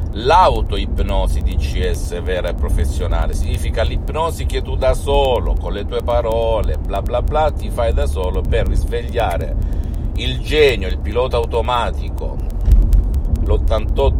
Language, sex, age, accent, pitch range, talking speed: Italian, male, 50-69, native, 75-100 Hz, 135 wpm